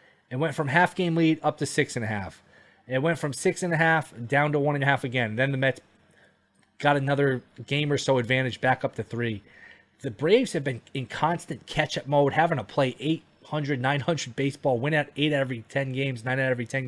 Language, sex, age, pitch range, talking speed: English, male, 20-39, 125-155 Hz, 200 wpm